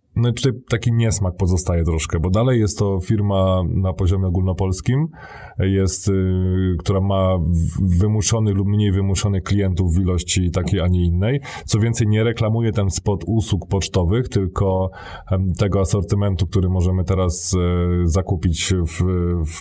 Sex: male